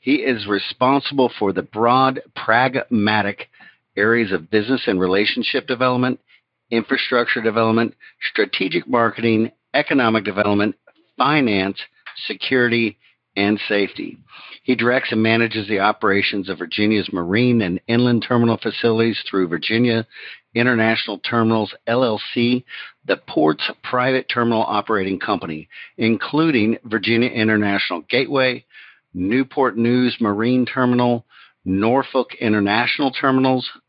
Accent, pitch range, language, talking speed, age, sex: American, 100-125 Hz, English, 105 wpm, 50-69, male